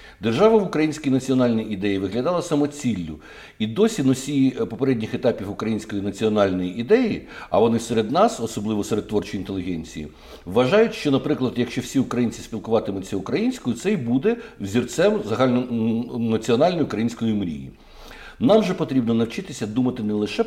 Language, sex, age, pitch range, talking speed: Ukrainian, male, 60-79, 110-150 Hz, 130 wpm